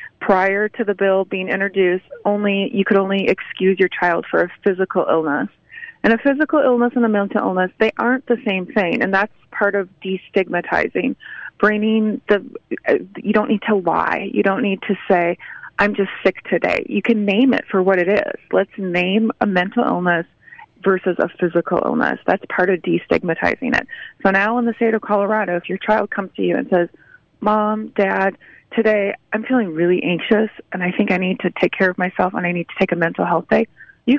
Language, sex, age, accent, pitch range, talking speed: English, female, 30-49, American, 185-225 Hz, 200 wpm